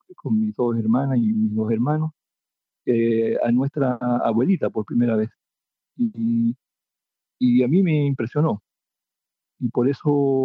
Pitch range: 115-155 Hz